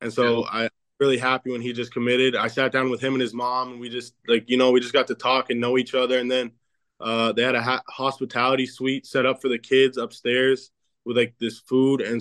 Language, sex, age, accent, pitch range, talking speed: English, male, 20-39, American, 115-130 Hz, 260 wpm